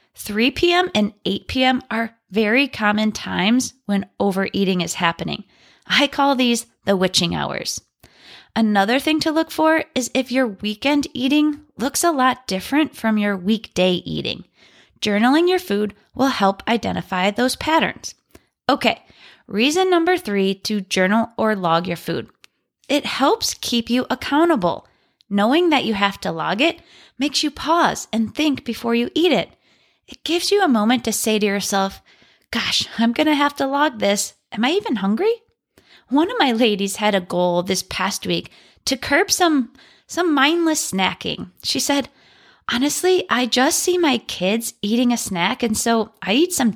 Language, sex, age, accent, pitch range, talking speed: English, female, 20-39, American, 210-300 Hz, 165 wpm